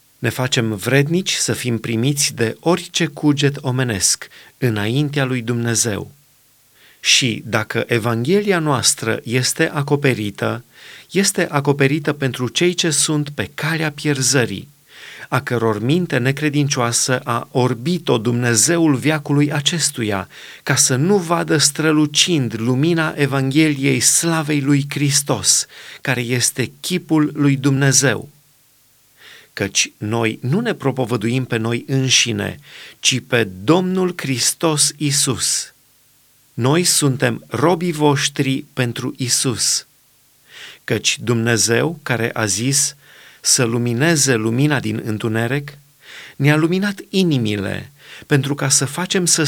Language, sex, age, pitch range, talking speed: Romanian, male, 30-49, 125-155 Hz, 110 wpm